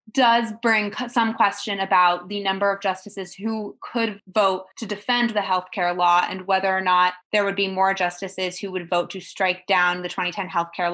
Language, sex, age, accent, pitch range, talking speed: English, female, 20-39, American, 180-205 Hz, 205 wpm